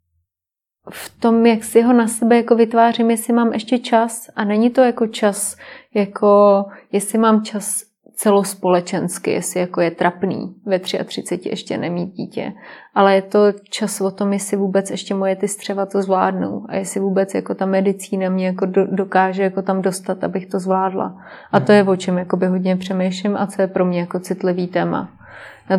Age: 30-49